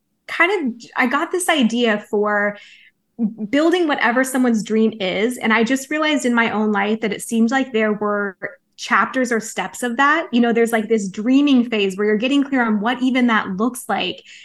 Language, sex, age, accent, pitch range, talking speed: English, female, 20-39, American, 220-265 Hz, 200 wpm